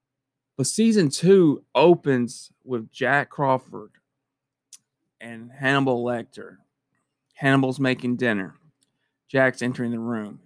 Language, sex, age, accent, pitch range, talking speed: English, male, 20-39, American, 130-150 Hz, 100 wpm